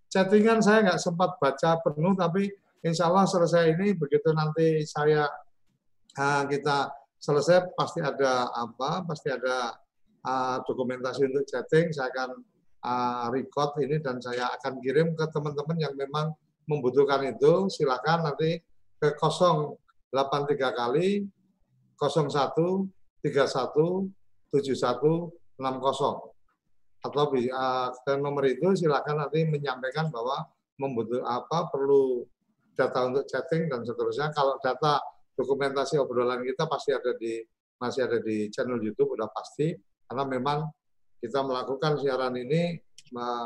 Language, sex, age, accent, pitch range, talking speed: Indonesian, male, 50-69, native, 125-160 Hz, 115 wpm